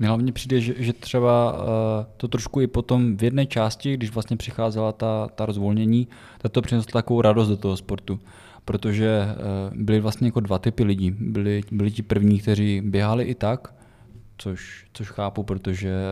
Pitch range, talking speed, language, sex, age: 100-115 Hz, 170 wpm, Czech, male, 20-39